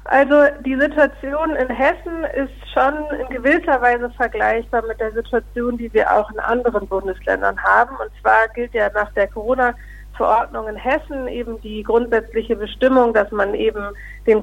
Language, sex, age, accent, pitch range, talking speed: German, female, 50-69, German, 210-250 Hz, 160 wpm